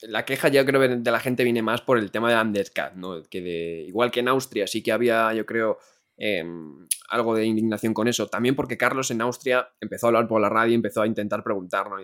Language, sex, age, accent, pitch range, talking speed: Spanish, male, 20-39, Spanish, 105-120 Hz, 235 wpm